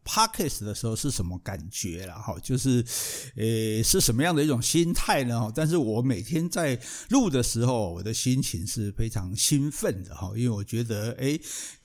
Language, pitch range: Chinese, 110-150 Hz